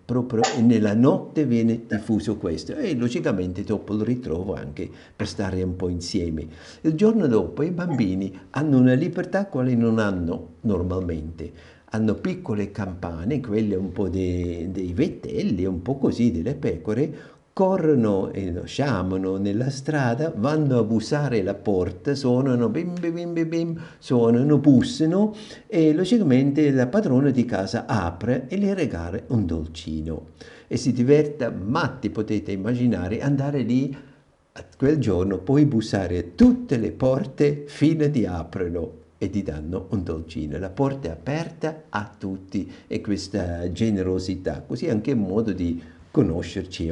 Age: 50-69